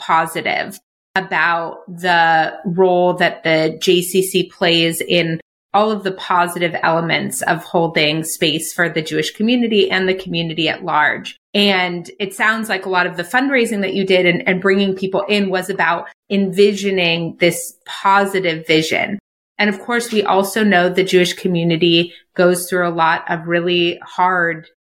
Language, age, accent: English, 30-49, American